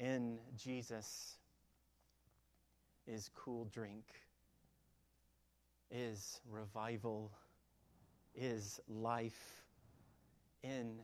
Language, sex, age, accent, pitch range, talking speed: English, male, 30-49, American, 90-120 Hz, 55 wpm